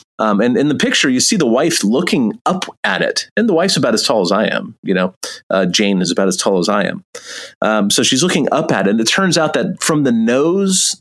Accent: American